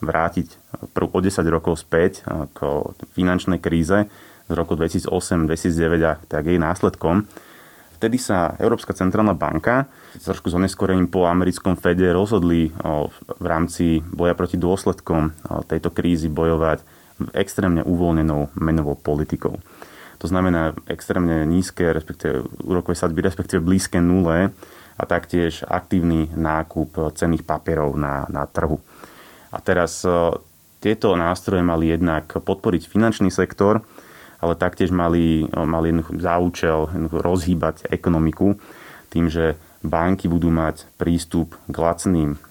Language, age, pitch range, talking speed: Slovak, 30-49, 80-90 Hz, 115 wpm